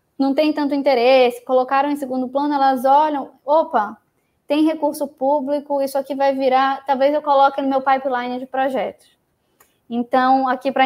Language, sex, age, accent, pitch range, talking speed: Portuguese, female, 10-29, Brazilian, 235-275 Hz, 160 wpm